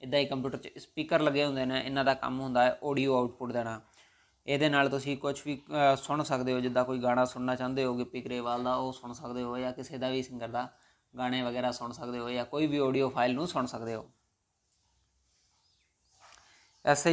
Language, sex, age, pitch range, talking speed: Punjabi, male, 20-39, 125-140 Hz, 200 wpm